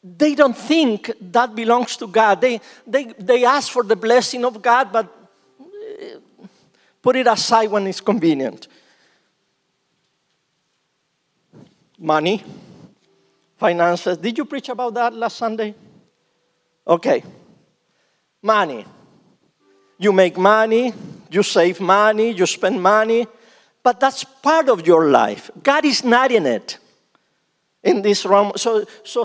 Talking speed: 120 wpm